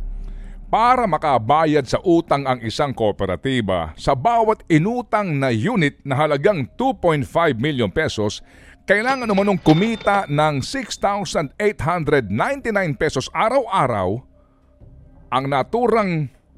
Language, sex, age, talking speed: Filipino, male, 50-69, 95 wpm